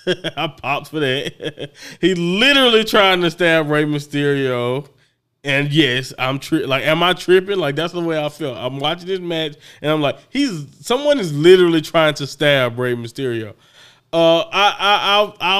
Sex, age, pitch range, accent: male, 20-39, 140-195 Hz, American